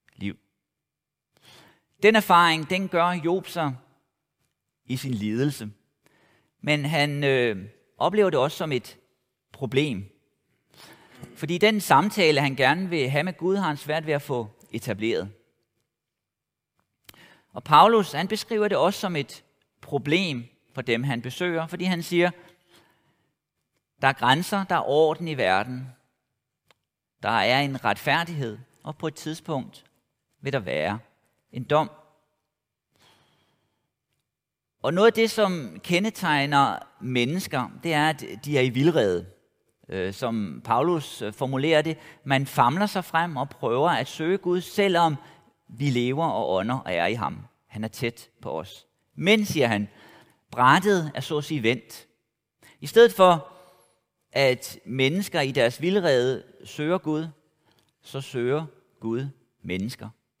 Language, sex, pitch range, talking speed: Danish, male, 125-170 Hz, 135 wpm